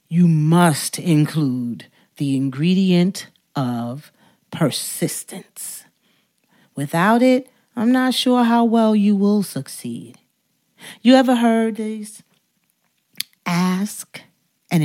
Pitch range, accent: 145-215 Hz, American